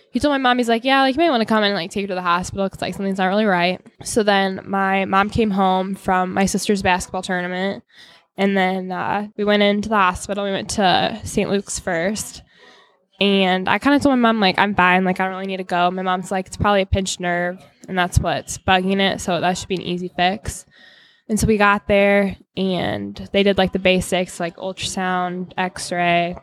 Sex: female